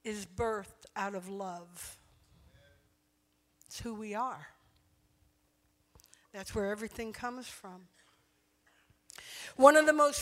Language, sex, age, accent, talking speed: English, female, 50-69, American, 105 wpm